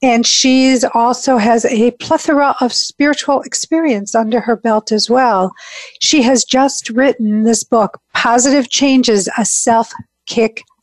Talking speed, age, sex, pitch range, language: 135 wpm, 50-69, female, 205-250 Hz, English